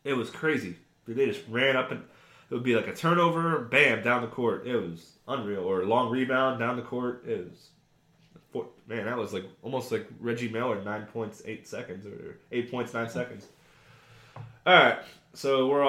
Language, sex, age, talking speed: English, male, 20-39, 195 wpm